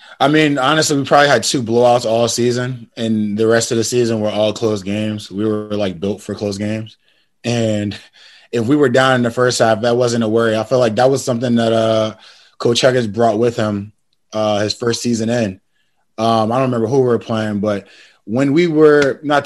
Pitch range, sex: 105-120 Hz, male